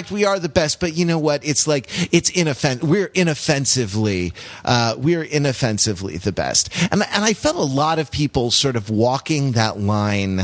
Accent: American